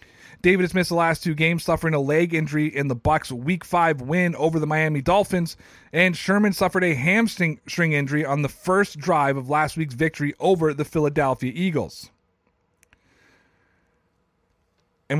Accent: American